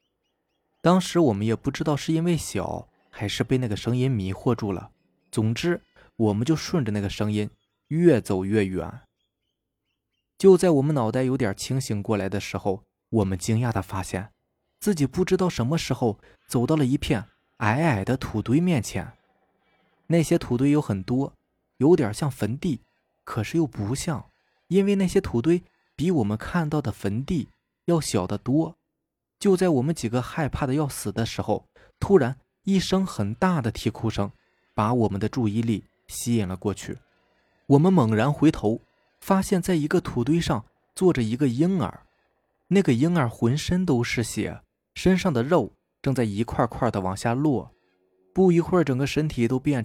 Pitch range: 105-160 Hz